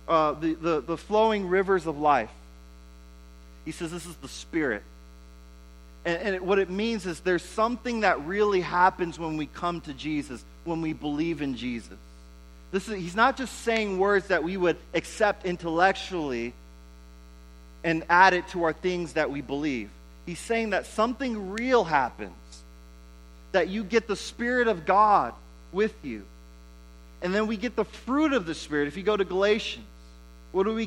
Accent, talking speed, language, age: American, 175 wpm, English, 30-49